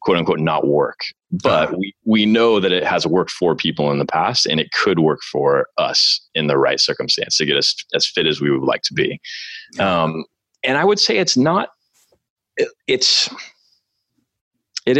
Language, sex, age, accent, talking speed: English, male, 30-49, American, 190 wpm